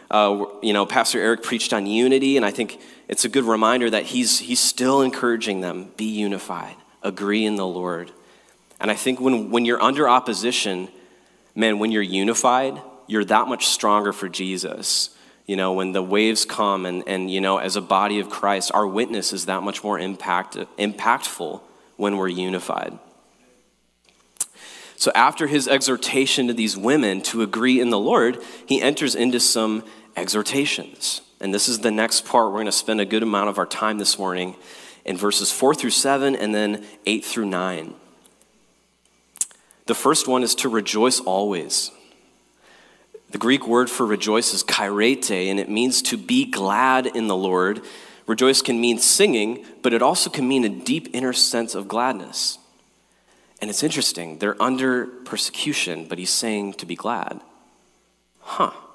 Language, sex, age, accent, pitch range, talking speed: English, male, 30-49, American, 95-125 Hz, 170 wpm